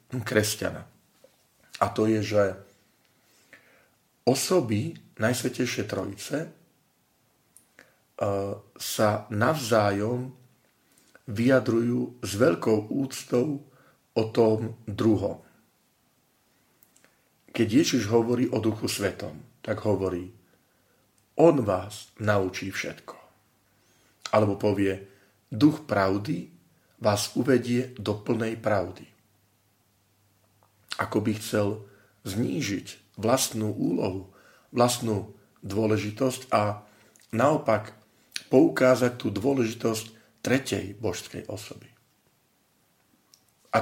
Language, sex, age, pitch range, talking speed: Slovak, male, 40-59, 100-125 Hz, 75 wpm